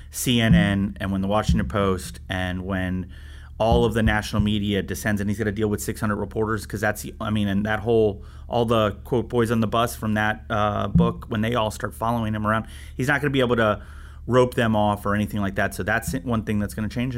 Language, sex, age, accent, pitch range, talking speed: English, male, 30-49, American, 95-115 Hz, 245 wpm